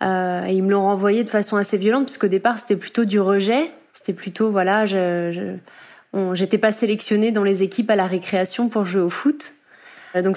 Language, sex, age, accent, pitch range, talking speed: French, female, 20-39, French, 195-235 Hz, 205 wpm